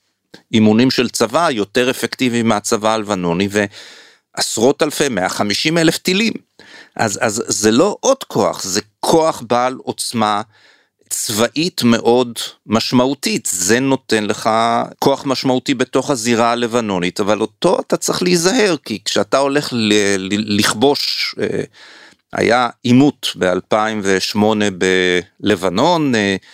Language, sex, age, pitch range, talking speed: Hebrew, male, 50-69, 105-140 Hz, 110 wpm